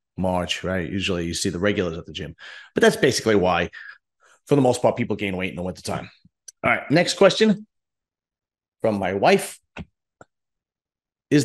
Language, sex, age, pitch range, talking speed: English, male, 40-59, 100-135 Hz, 175 wpm